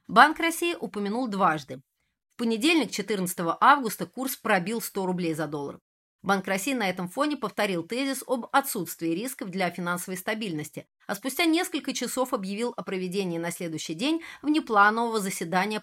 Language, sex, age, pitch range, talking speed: Russian, female, 30-49, 175-240 Hz, 150 wpm